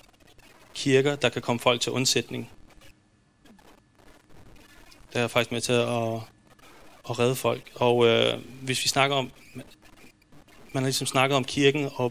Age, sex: 30-49, male